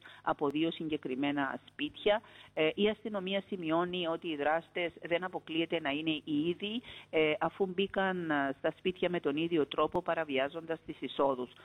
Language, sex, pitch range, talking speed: Greek, female, 150-180 Hz, 150 wpm